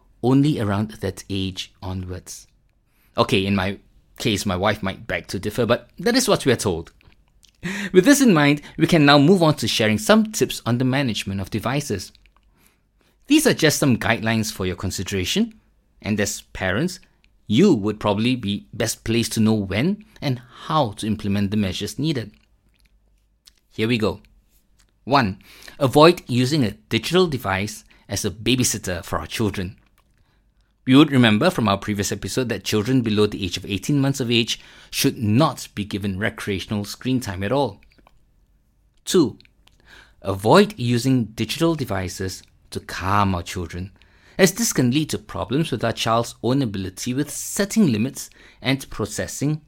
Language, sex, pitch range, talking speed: English, male, 100-130 Hz, 160 wpm